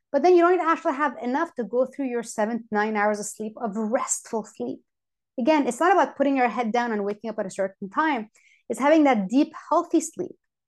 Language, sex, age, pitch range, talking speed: English, female, 30-49, 220-280 Hz, 240 wpm